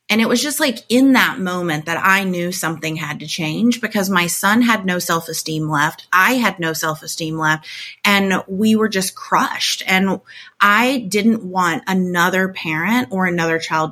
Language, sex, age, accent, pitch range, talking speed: English, female, 30-49, American, 165-210 Hz, 175 wpm